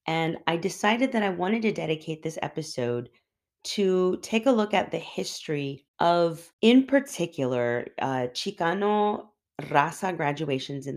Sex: female